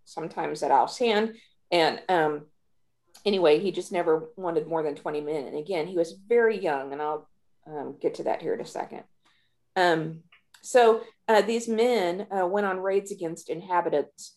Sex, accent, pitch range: female, American, 150-205 Hz